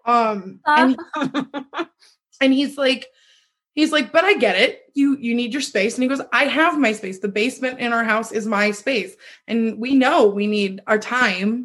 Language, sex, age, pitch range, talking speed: English, female, 20-39, 215-275 Hz, 200 wpm